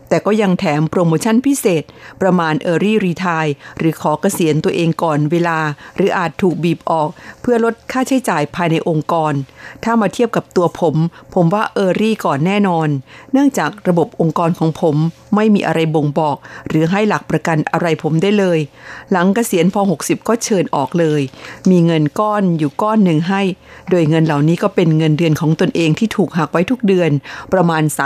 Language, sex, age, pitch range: Thai, female, 50-69, 160-200 Hz